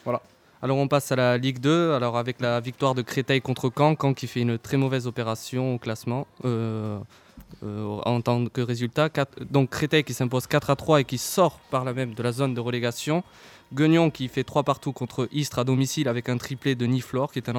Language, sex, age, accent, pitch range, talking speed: French, male, 20-39, French, 120-140 Hz, 230 wpm